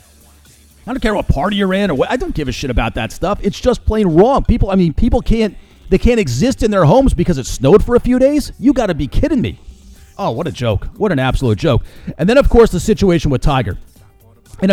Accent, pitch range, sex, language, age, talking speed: American, 125-190 Hz, male, English, 40-59, 255 wpm